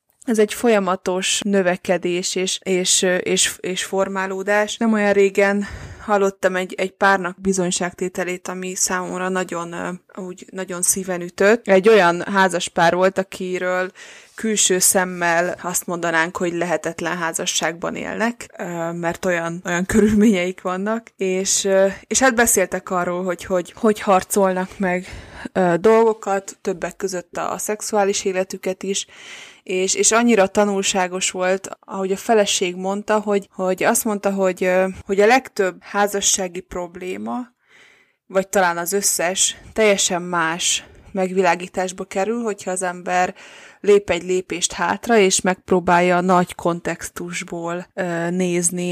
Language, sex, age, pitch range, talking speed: Hungarian, female, 20-39, 180-205 Hz, 125 wpm